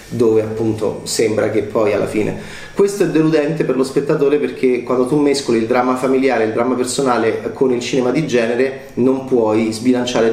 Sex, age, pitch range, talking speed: male, 30-49, 110-130 Hz, 180 wpm